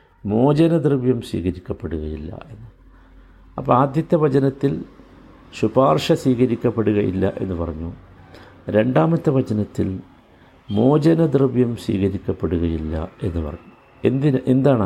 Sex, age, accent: male, 60-79, native